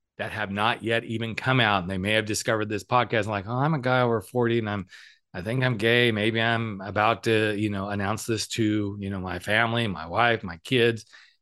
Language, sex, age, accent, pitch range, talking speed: English, male, 40-59, American, 105-140 Hz, 235 wpm